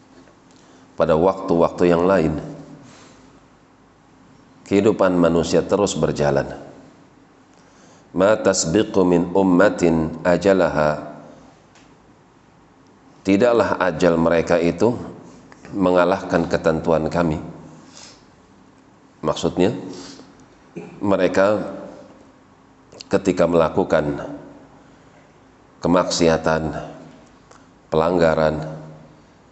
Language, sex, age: Indonesian, male, 40-59